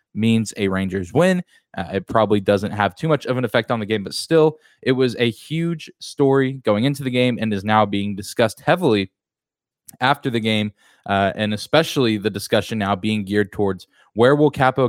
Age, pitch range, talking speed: 20-39, 110-140 Hz, 200 wpm